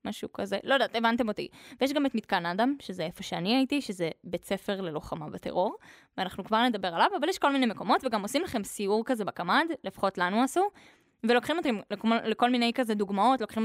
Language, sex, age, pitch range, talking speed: Hebrew, female, 20-39, 195-265 Hz, 200 wpm